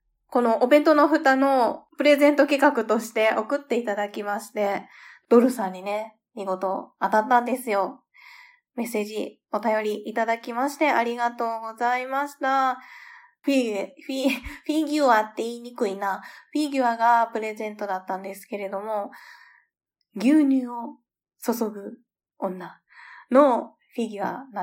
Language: Japanese